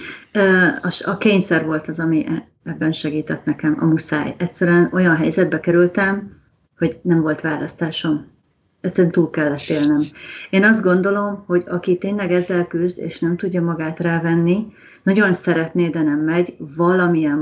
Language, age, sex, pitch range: Hungarian, 30-49, female, 160-195 Hz